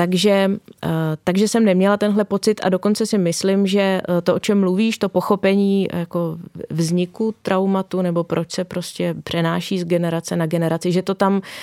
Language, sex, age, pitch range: Czech, female, 20-39, 165-185 Hz